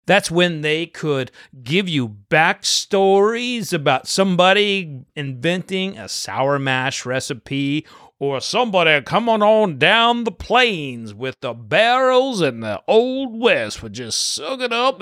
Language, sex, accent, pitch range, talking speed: English, male, American, 135-200 Hz, 130 wpm